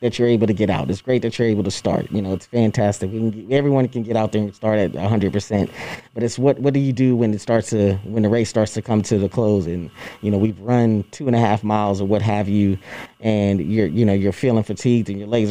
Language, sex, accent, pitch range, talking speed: English, male, American, 100-115 Hz, 285 wpm